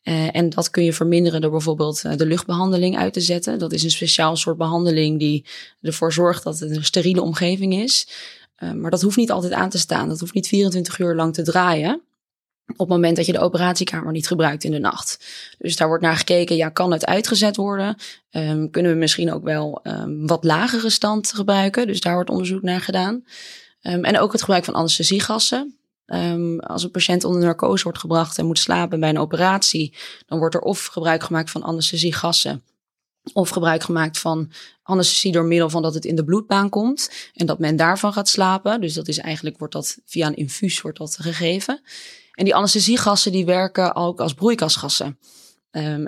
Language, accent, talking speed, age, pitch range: Dutch, Dutch, 195 wpm, 20-39, 160-190 Hz